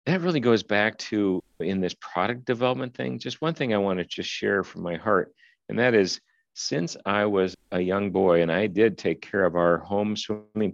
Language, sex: English, male